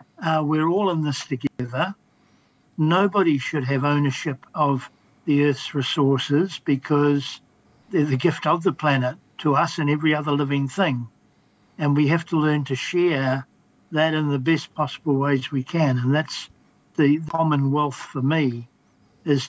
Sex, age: male, 60-79